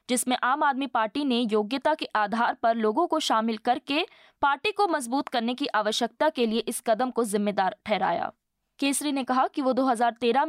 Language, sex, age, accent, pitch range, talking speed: Hindi, female, 20-39, native, 225-305 Hz, 185 wpm